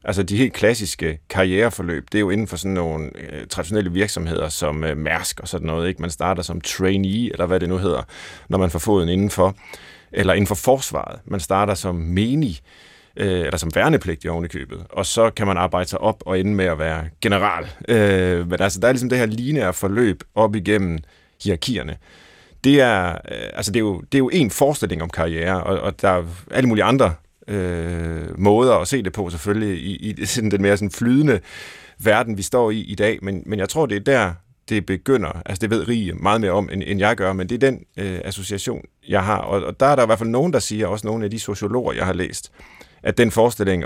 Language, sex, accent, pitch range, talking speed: Danish, male, native, 90-105 Hz, 220 wpm